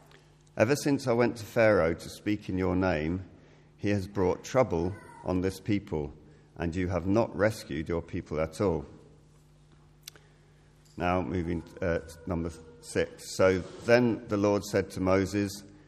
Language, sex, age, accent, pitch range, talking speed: English, male, 50-69, British, 85-105 Hz, 150 wpm